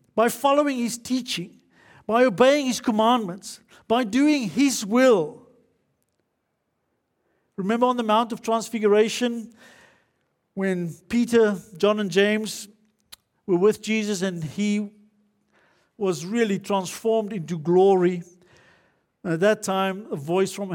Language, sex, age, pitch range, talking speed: English, male, 50-69, 180-245 Hz, 115 wpm